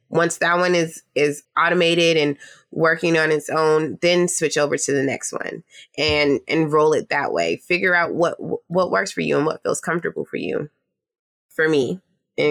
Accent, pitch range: American, 150-185 Hz